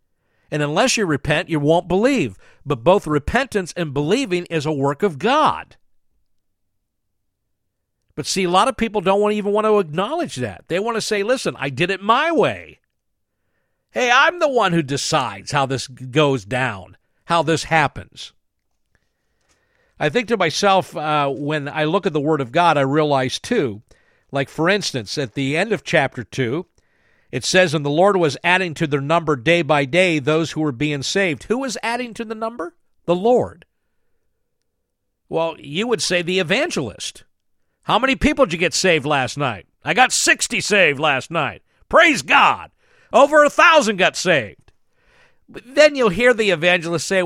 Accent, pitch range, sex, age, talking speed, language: American, 145-205 Hz, male, 50-69, 175 wpm, English